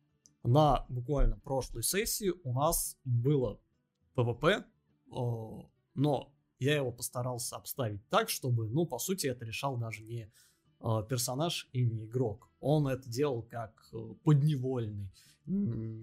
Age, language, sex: 20-39, Russian, male